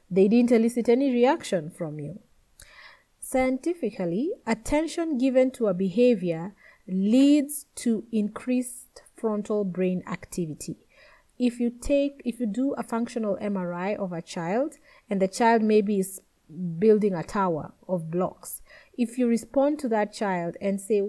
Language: English